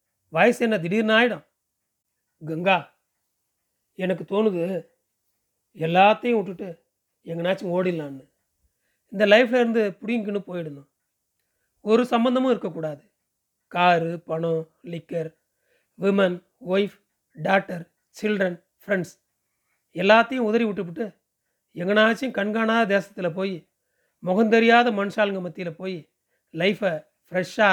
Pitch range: 170-220 Hz